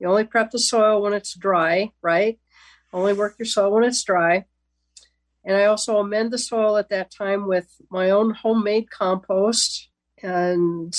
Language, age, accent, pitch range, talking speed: English, 50-69, American, 190-225 Hz, 170 wpm